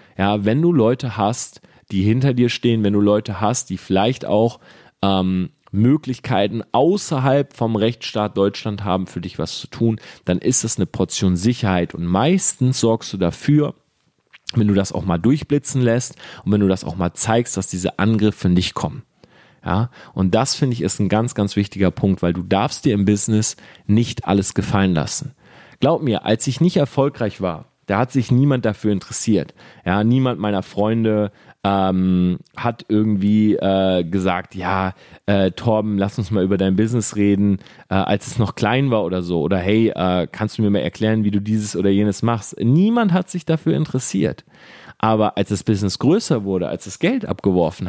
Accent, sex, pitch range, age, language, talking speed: German, male, 100-130 Hz, 30-49, German, 185 wpm